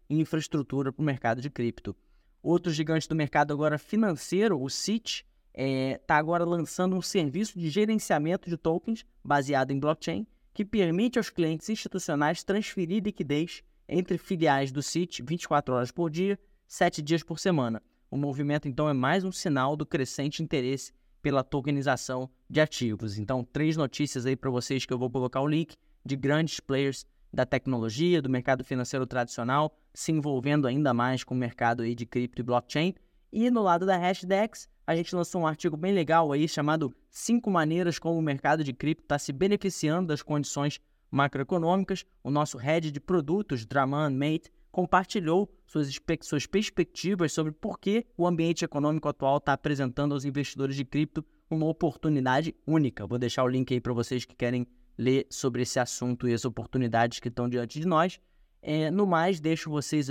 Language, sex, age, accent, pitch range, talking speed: Portuguese, male, 20-39, Brazilian, 130-170 Hz, 175 wpm